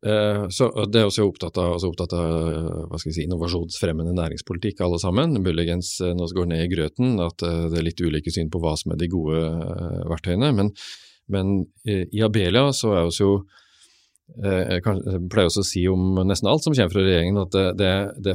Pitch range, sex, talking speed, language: 90-105 Hz, male, 205 wpm, English